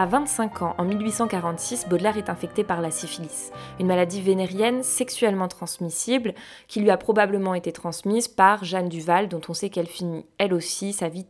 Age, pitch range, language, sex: 20-39, 170-215 Hz, French, female